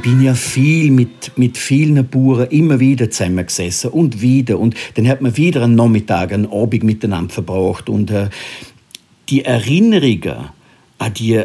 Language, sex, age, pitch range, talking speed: German, male, 50-69, 115-140 Hz, 155 wpm